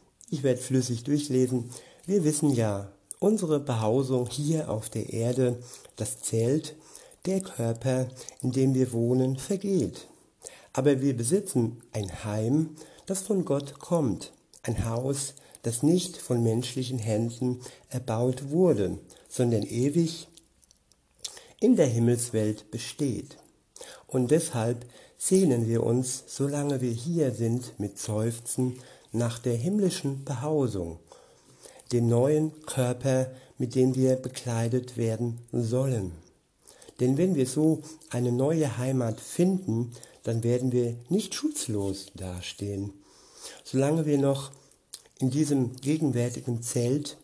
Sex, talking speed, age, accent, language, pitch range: male, 115 wpm, 60-79, German, German, 115-145 Hz